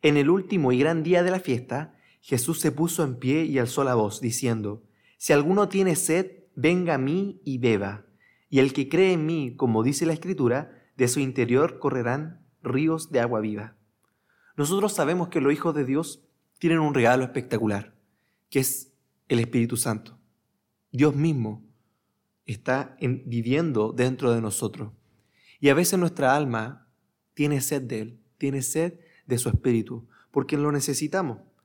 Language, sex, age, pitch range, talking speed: Spanish, male, 30-49, 115-150 Hz, 165 wpm